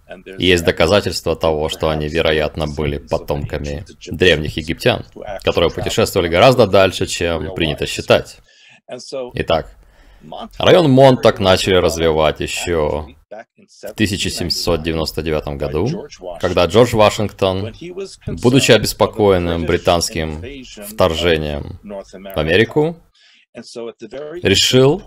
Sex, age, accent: male, 30-49, native